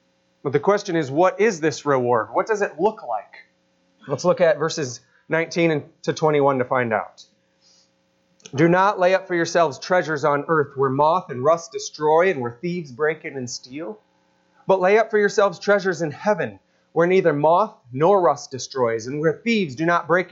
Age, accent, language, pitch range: 30-49, American, English, 130-185 Hz